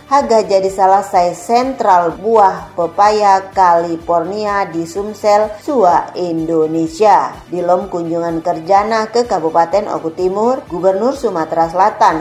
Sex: female